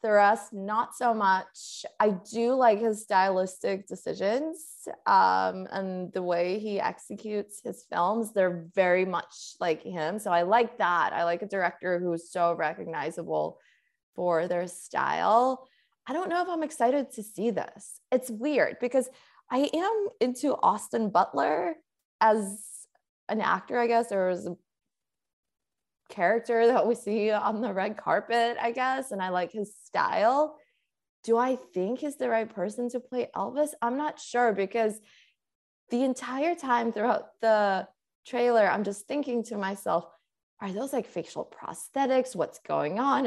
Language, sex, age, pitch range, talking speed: English, female, 20-39, 190-250 Hz, 155 wpm